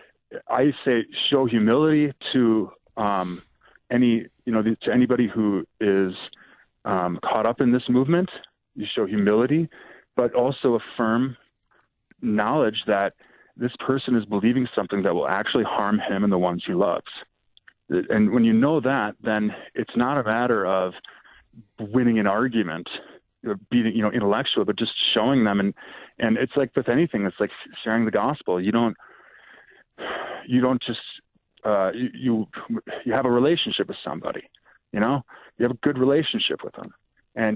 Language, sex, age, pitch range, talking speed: English, male, 30-49, 110-125 Hz, 160 wpm